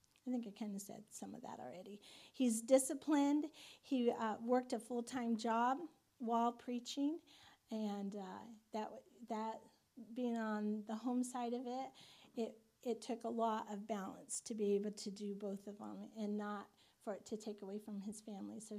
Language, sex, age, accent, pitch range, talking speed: English, female, 40-59, American, 215-245 Hz, 185 wpm